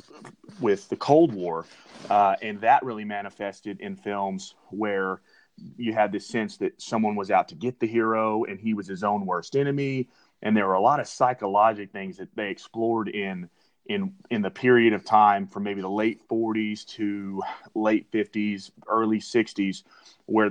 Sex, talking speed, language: male, 175 wpm, English